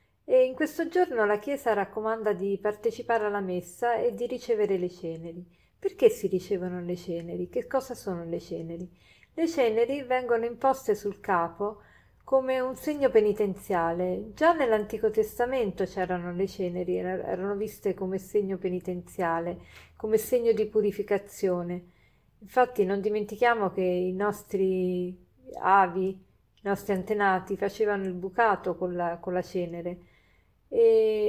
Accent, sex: native, female